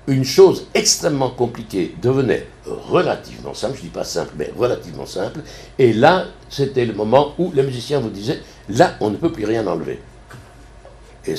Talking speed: 175 wpm